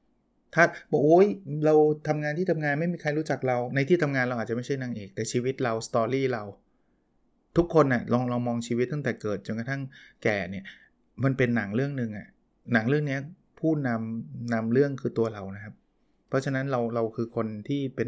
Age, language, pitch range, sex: 20-39, Thai, 115-140 Hz, male